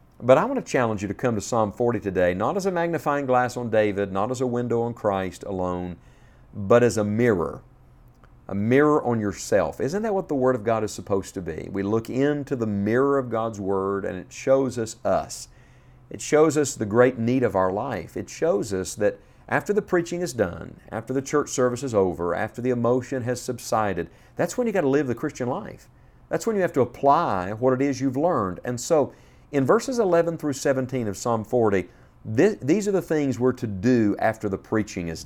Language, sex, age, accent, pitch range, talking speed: English, male, 50-69, American, 100-135 Hz, 220 wpm